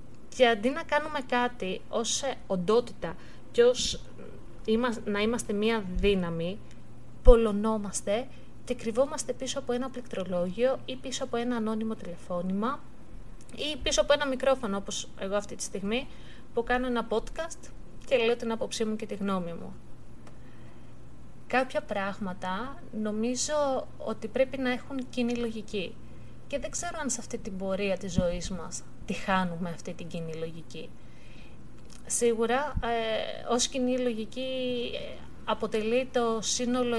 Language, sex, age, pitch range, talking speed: Greek, female, 20-39, 200-245 Hz, 135 wpm